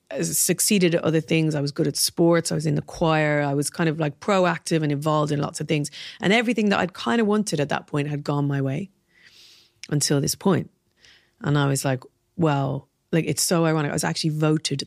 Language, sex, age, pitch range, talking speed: English, female, 30-49, 140-170 Hz, 225 wpm